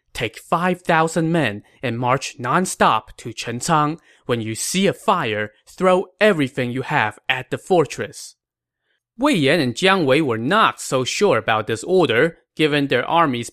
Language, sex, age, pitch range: English, male, 20-39, 120-175 Hz